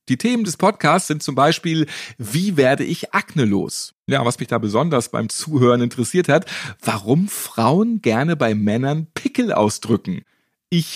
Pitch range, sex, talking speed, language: 120-200 Hz, male, 160 wpm, German